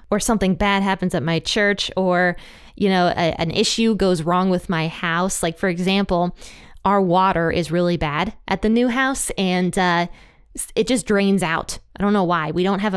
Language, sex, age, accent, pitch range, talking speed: English, female, 20-39, American, 180-235 Hz, 200 wpm